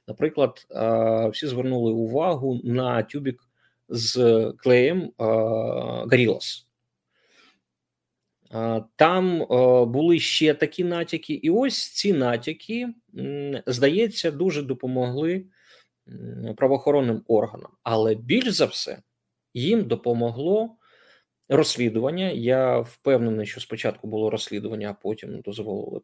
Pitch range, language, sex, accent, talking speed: 115-160 Hz, Ukrainian, male, native, 90 wpm